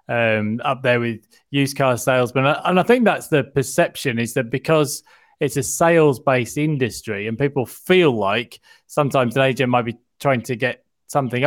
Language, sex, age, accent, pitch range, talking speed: English, male, 20-39, British, 120-150 Hz, 180 wpm